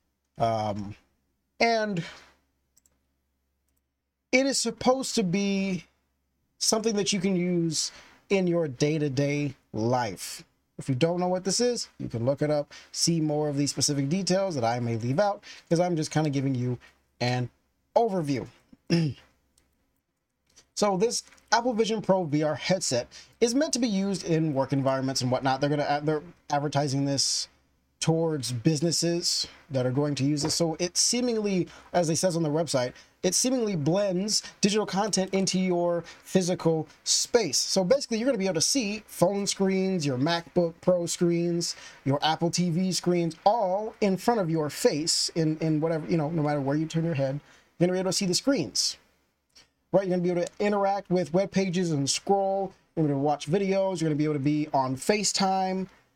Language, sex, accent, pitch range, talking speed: English, male, American, 140-190 Hz, 175 wpm